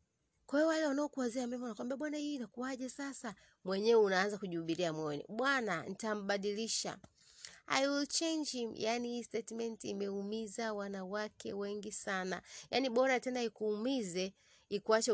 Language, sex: Swahili, female